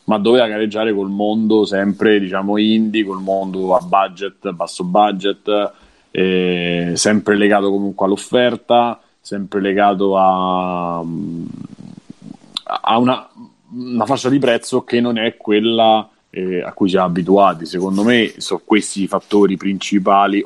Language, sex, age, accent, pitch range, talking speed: Italian, male, 30-49, native, 95-115 Hz, 130 wpm